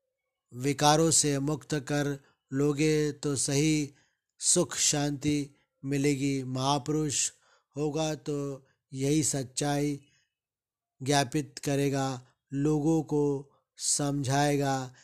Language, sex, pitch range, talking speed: Hindi, male, 130-145 Hz, 80 wpm